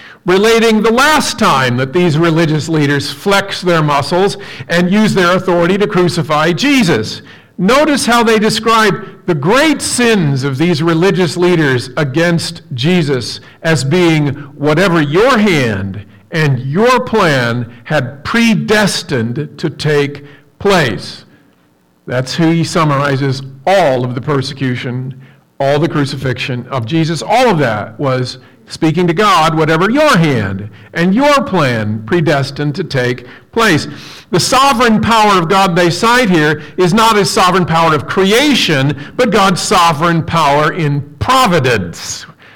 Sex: male